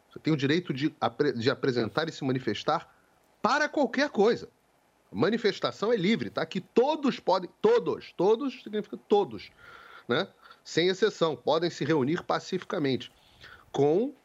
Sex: male